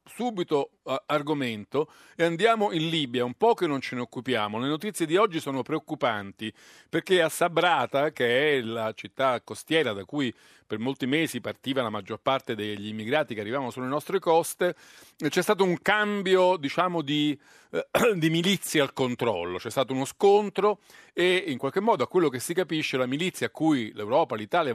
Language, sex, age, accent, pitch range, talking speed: Italian, male, 50-69, native, 115-165 Hz, 175 wpm